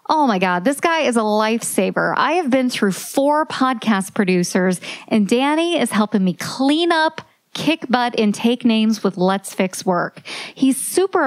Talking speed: 175 wpm